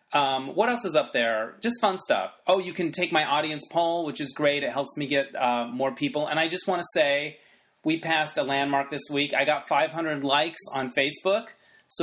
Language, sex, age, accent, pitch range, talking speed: English, male, 30-49, American, 140-165 Hz, 225 wpm